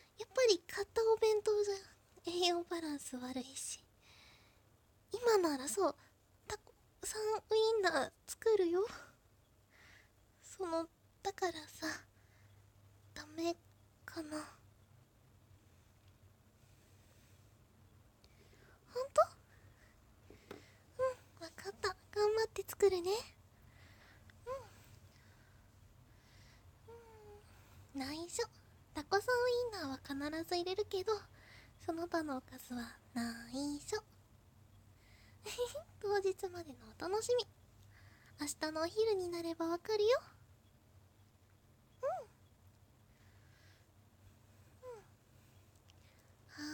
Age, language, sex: 20-39, Japanese, female